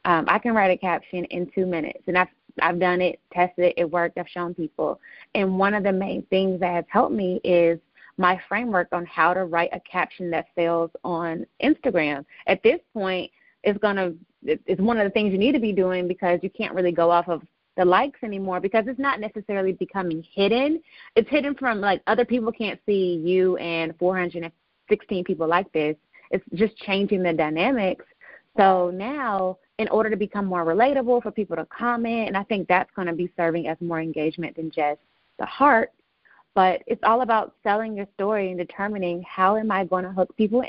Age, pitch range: 30-49, 175-215 Hz